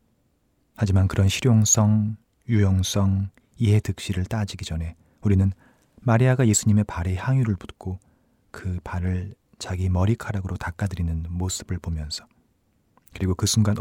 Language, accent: Korean, native